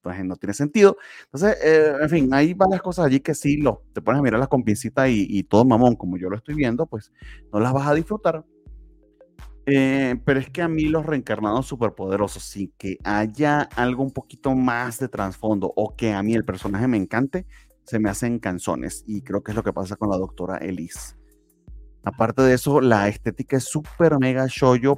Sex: male